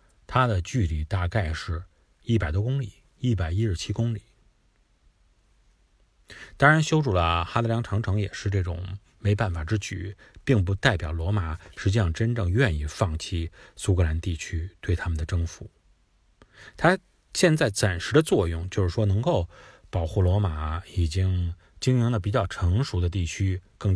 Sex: male